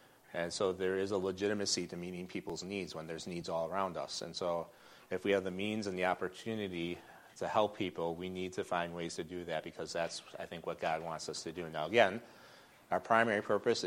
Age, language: 30-49, English